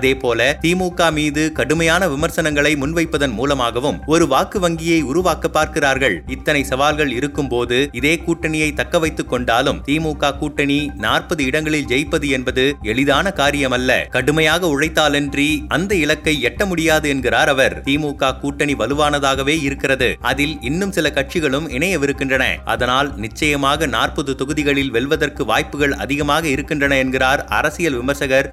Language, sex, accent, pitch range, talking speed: Tamil, male, native, 135-160 Hz, 120 wpm